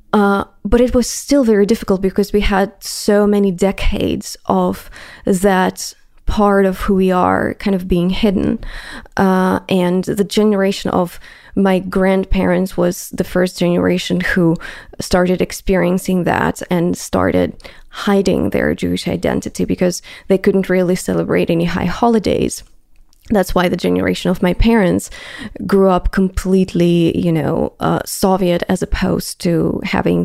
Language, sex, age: English, female, 20-39